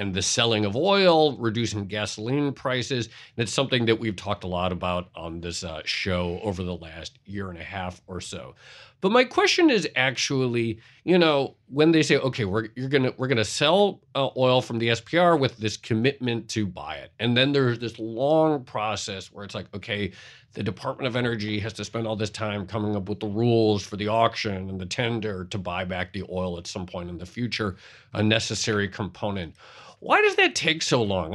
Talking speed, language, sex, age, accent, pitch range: 210 wpm, English, male, 40-59, American, 105-135 Hz